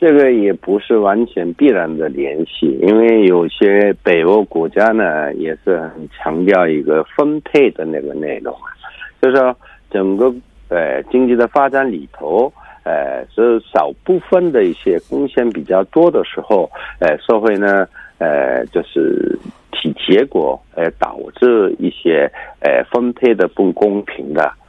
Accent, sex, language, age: Chinese, male, Korean, 60-79